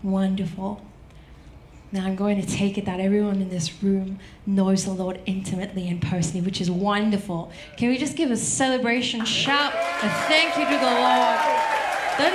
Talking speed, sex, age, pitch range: 170 wpm, female, 20-39, 185-205 Hz